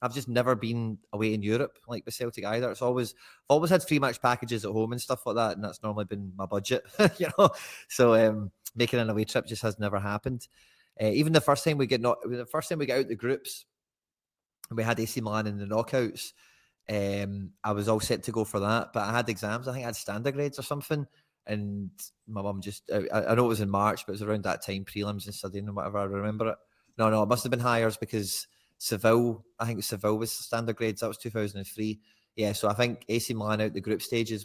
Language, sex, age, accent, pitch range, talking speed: English, male, 20-39, British, 105-125 Hz, 245 wpm